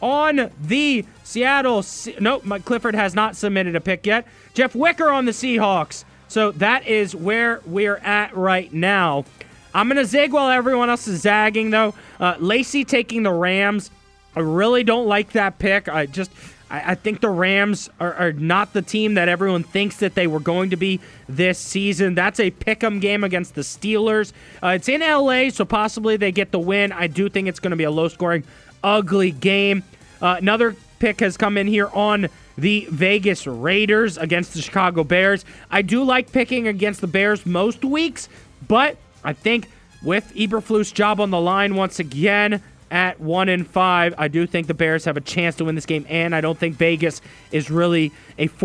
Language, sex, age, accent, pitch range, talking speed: English, male, 20-39, American, 175-220 Hz, 190 wpm